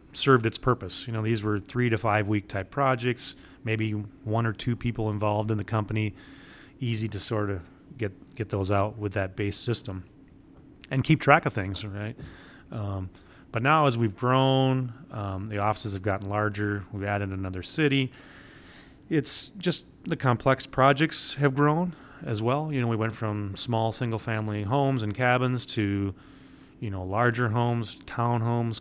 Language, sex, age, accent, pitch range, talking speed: English, male, 30-49, American, 105-125 Hz, 170 wpm